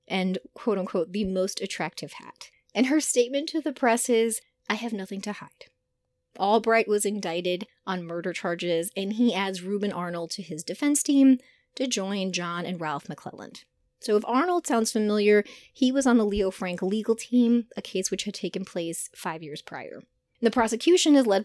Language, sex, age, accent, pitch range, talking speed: English, female, 30-49, American, 180-235 Hz, 180 wpm